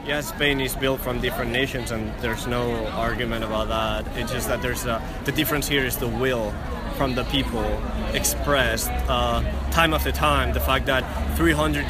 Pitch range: 115-135 Hz